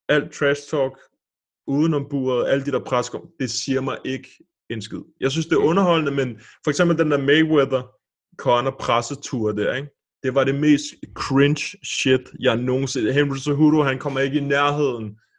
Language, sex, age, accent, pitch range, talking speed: Danish, male, 20-39, native, 120-155 Hz, 175 wpm